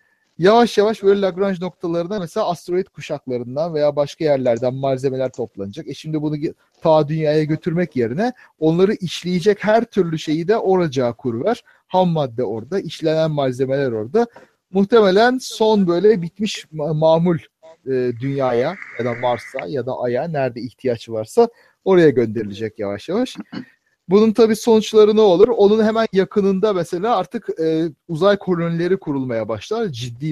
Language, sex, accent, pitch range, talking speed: Turkish, male, native, 130-195 Hz, 135 wpm